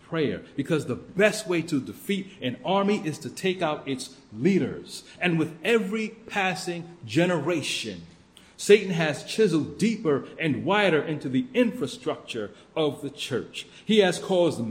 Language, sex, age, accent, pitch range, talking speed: English, male, 40-59, American, 140-200 Hz, 145 wpm